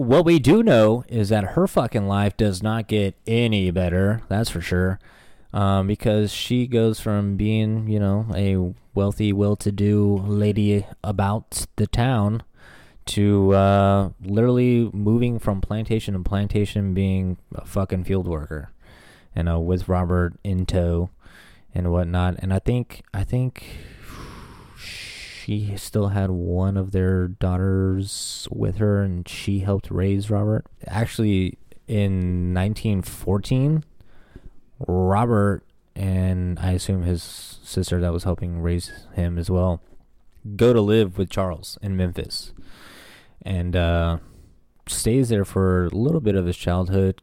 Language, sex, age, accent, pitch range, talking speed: English, male, 20-39, American, 90-105 Hz, 135 wpm